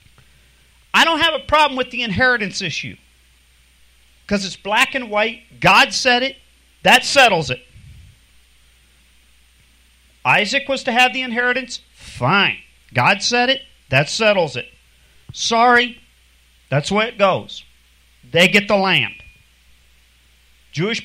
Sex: male